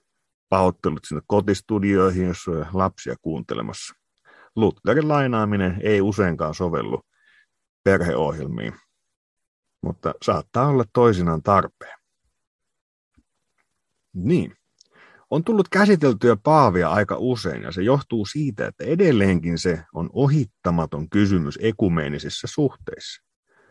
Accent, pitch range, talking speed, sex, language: native, 90-125 Hz, 95 wpm, male, Finnish